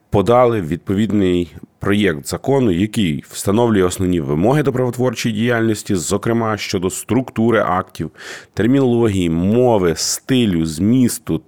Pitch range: 90-115 Hz